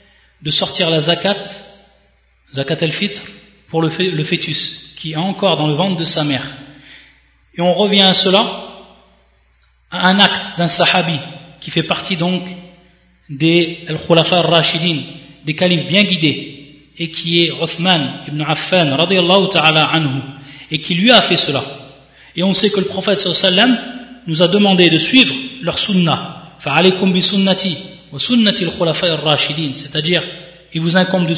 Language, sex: French, male